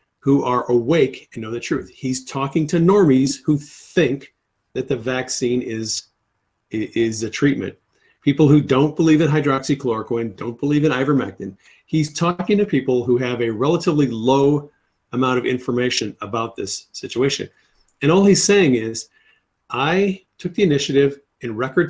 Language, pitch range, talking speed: English, 120-155 Hz, 155 wpm